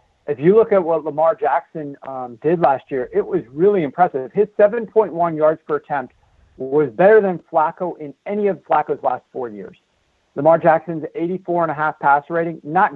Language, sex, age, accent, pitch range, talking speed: English, male, 50-69, American, 145-180 Hz, 170 wpm